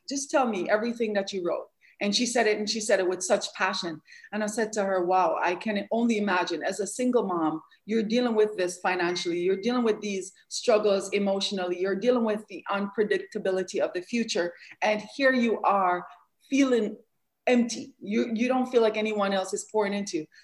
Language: English